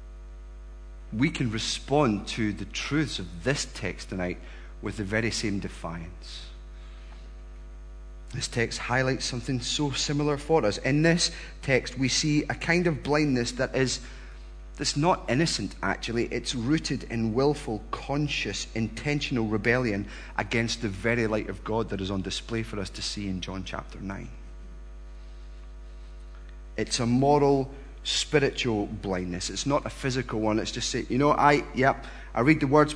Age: 30-49